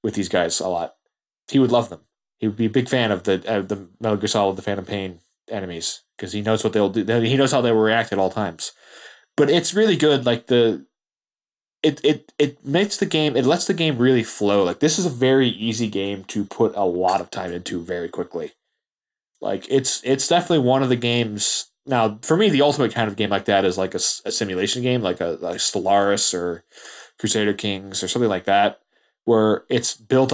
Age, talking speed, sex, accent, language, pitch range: 20-39, 220 wpm, male, American, English, 100-130 Hz